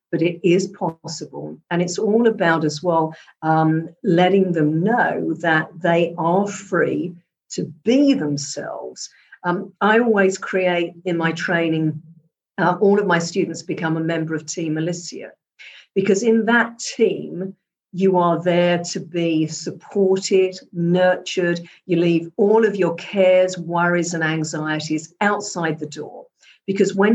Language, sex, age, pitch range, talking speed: English, female, 50-69, 160-195 Hz, 140 wpm